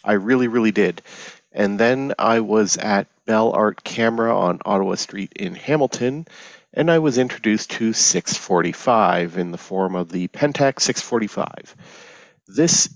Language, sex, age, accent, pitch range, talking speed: English, male, 40-59, American, 95-125 Hz, 145 wpm